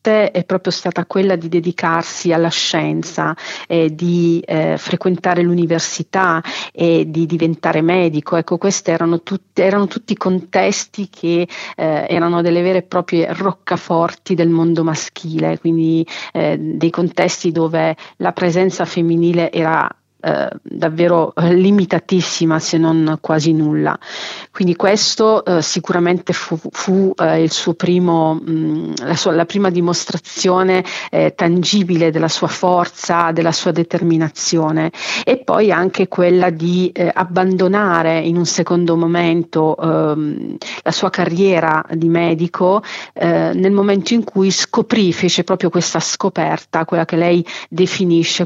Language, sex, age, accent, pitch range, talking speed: Italian, female, 40-59, native, 165-185 Hz, 130 wpm